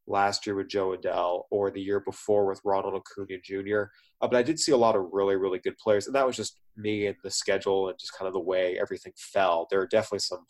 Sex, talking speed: male, 255 wpm